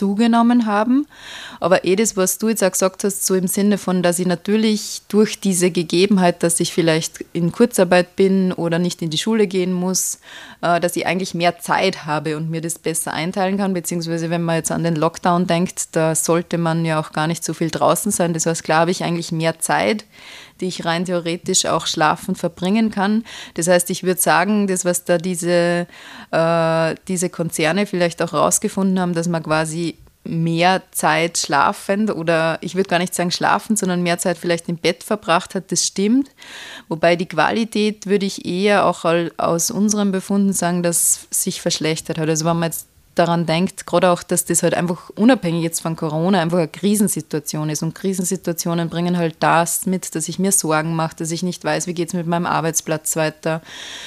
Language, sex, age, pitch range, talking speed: German, female, 20-39, 165-190 Hz, 195 wpm